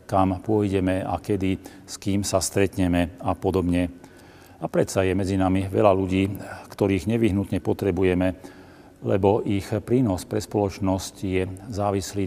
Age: 40-59